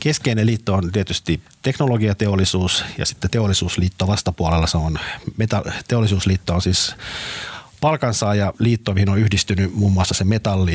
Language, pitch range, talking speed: Finnish, 85-105 Hz, 130 wpm